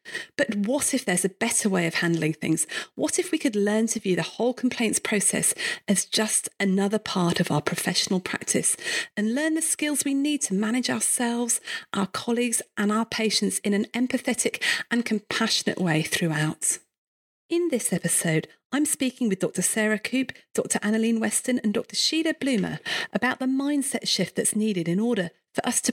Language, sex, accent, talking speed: English, female, British, 180 wpm